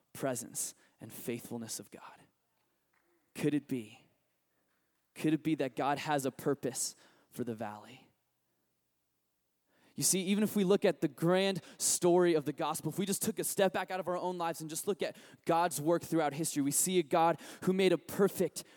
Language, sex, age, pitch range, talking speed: English, male, 20-39, 130-180 Hz, 190 wpm